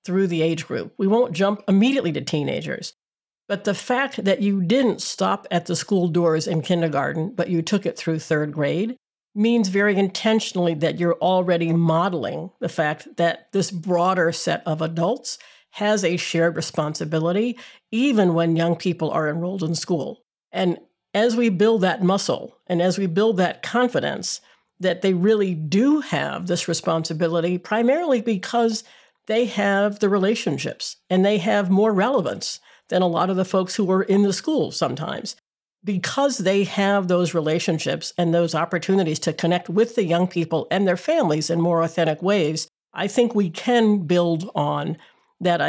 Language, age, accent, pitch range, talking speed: English, 50-69, American, 170-210 Hz, 165 wpm